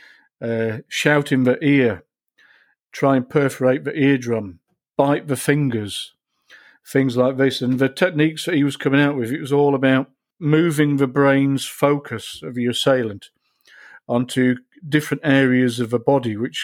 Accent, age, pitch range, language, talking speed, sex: British, 50-69, 120-140 Hz, English, 150 wpm, male